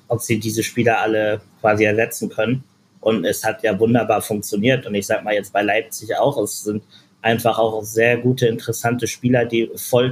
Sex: male